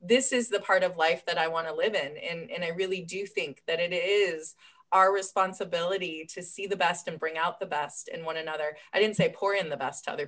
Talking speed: 250 wpm